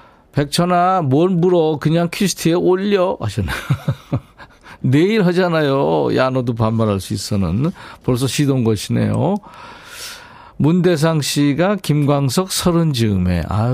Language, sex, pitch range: Korean, male, 110-155 Hz